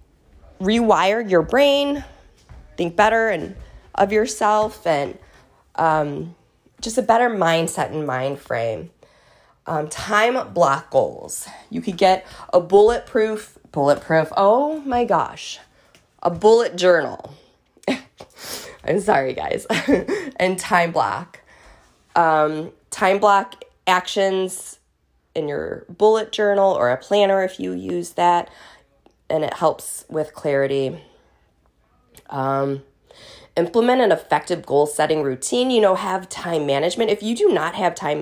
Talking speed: 120 wpm